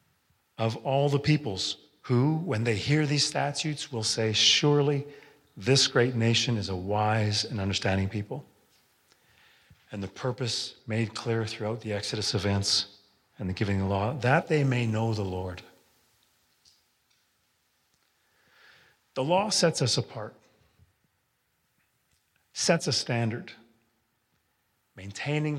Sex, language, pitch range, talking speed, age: male, English, 105-125 Hz, 120 wpm, 40-59